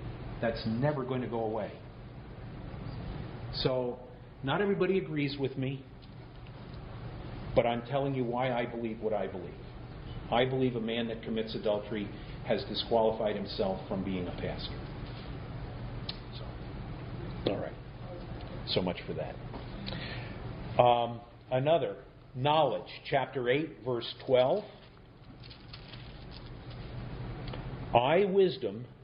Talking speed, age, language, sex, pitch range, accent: 105 wpm, 50-69, Italian, male, 120-140 Hz, American